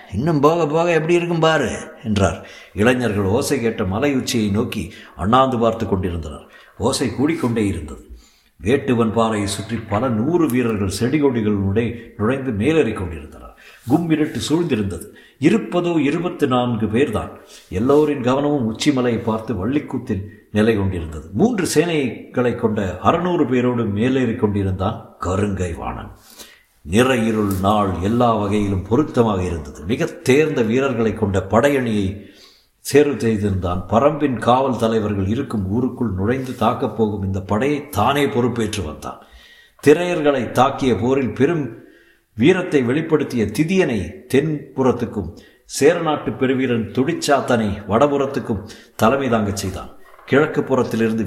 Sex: male